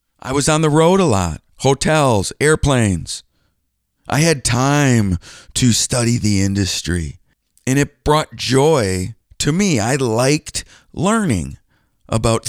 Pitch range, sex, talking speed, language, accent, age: 110-165 Hz, male, 125 wpm, English, American, 50-69